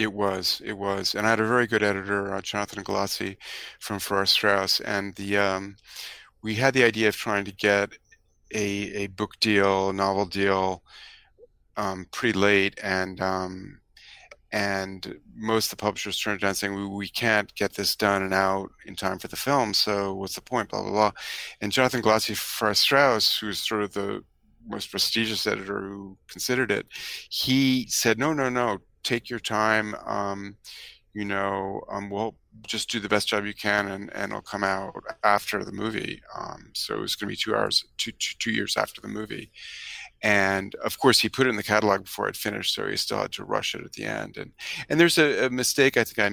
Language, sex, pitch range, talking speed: English, male, 100-110 Hz, 205 wpm